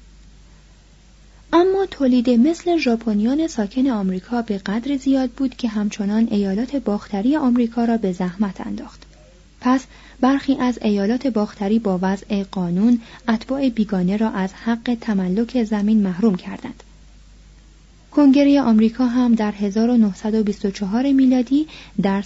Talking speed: 115 wpm